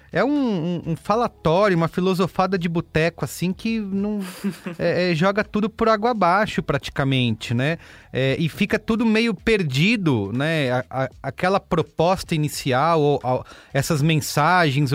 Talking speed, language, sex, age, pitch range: 120 wpm, English, male, 30-49, 130-185 Hz